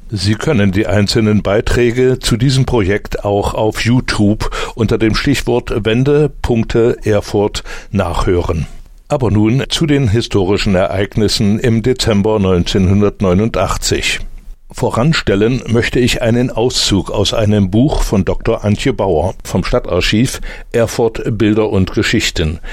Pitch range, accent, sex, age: 100-120 Hz, German, male, 60-79